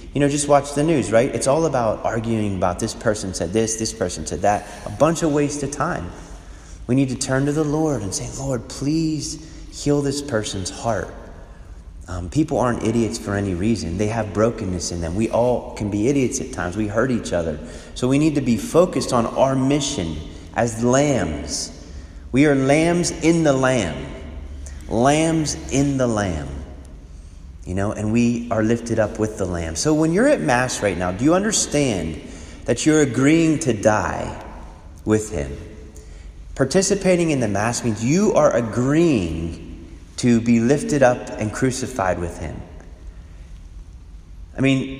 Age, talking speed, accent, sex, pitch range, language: 30-49, 175 wpm, American, male, 85-135 Hz, English